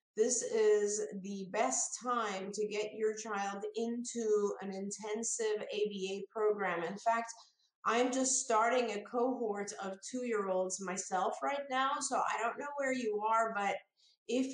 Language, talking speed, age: English, 155 wpm, 30-49